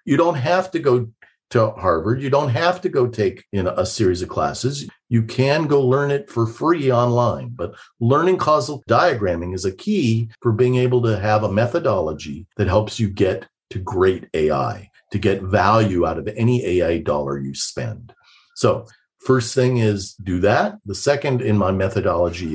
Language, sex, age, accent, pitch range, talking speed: English, male, 50-69, American, 100-130 Hz, 180 wpm